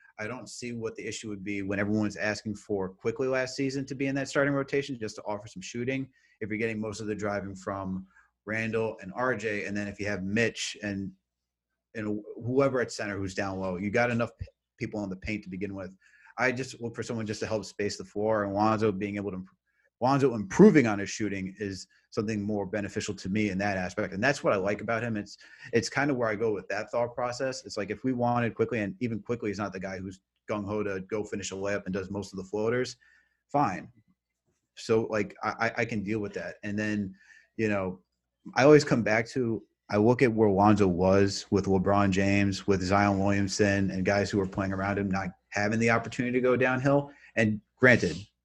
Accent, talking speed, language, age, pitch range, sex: American, 225 wpm, English, 30-49, 100-115 Hz, male